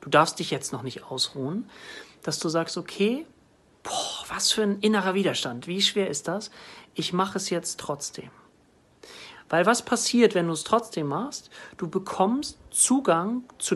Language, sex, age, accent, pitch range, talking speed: German, male, 40-59, German, 150-200 Hz, 165 wpm